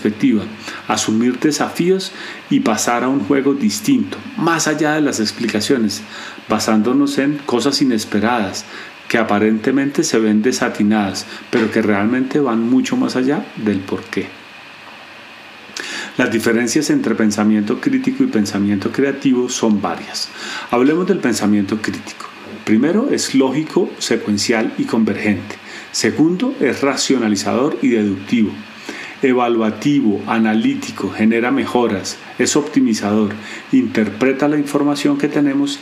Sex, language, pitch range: male, Spanish, 110-150 Hz